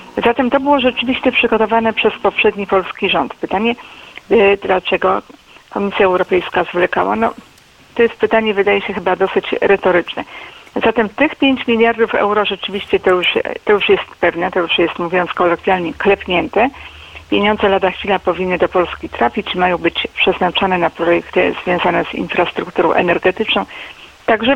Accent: native